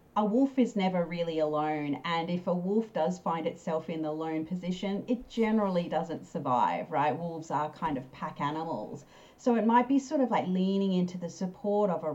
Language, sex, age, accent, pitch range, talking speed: English, female, 40-59, Australian, 155-200 Hz, 205 wpm